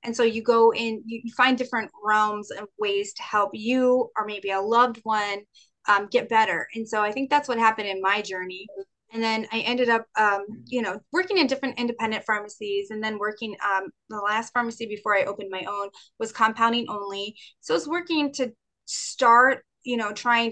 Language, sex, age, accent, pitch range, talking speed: English, female, 30-49, American, 205-240 Hz, 200 wpm